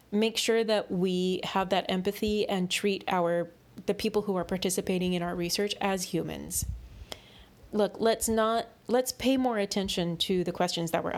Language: English